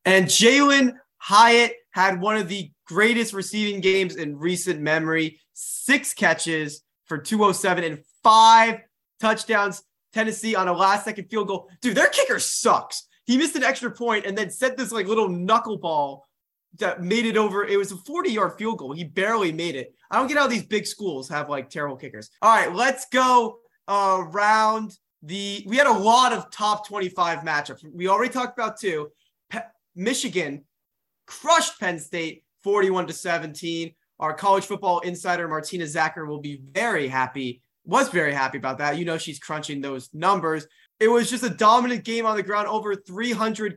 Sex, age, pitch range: male, 20-39, 165-225 Hz